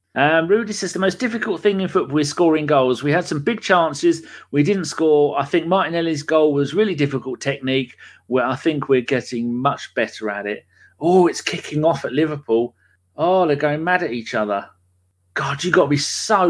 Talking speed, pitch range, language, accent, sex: 205 wpm, 125-165 Hz, English, British, male